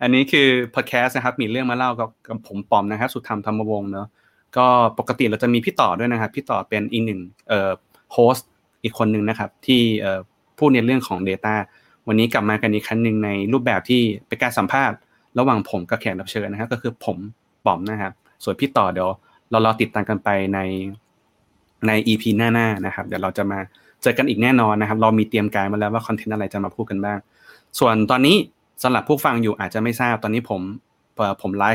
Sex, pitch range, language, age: male, 100-120 Hz, Thai, 20-39